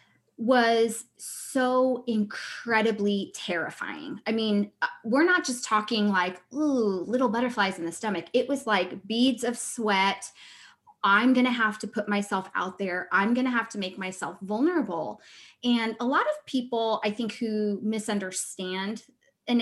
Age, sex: 20-39, female